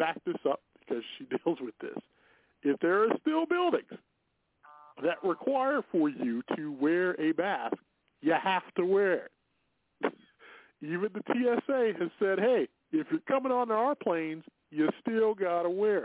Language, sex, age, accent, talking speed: English, male, 40-59, American, 160 wpm